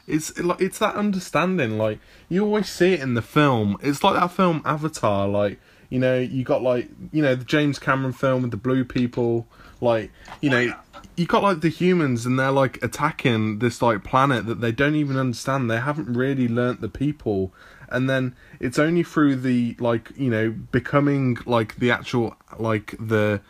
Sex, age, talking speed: male, 20-39, 190 wpm